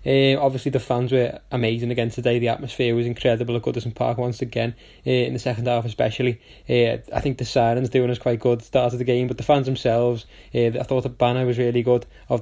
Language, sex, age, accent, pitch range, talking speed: English, male, 20-39, British, 120-130 Hz, 245 wpm